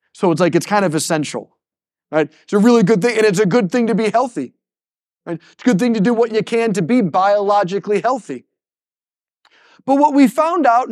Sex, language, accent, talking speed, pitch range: male, English, American, 210 wpm, 165-225 Hz